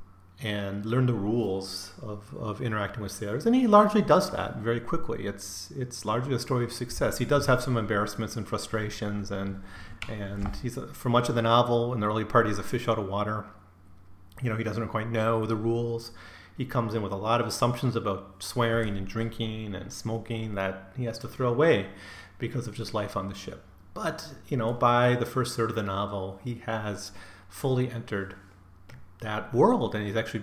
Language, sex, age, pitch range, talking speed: English, male, 30-49, 100-120 Hz, 200 wpm